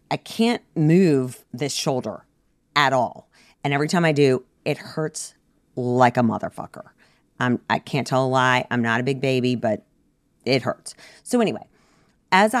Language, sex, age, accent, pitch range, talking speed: English, female, 40-59, American, 130-190 Hz, 160 wpm